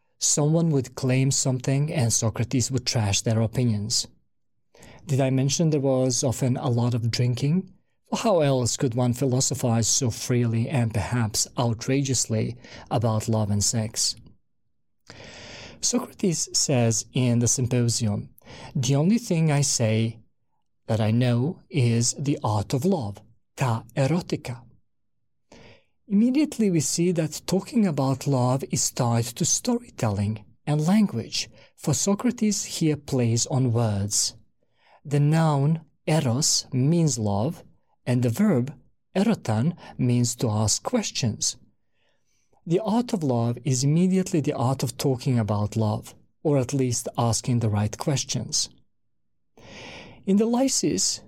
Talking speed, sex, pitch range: 125 wpm, male, 115-155 Hz